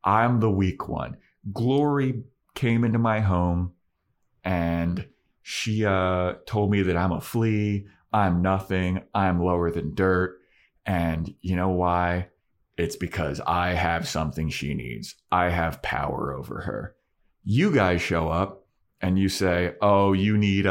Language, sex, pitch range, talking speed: English, male, 90-110 Hz, 145 wpm